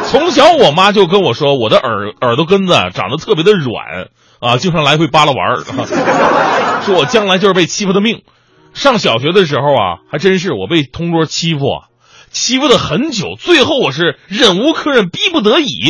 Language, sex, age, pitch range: Chinese, male, 30-49, 135-210 Hz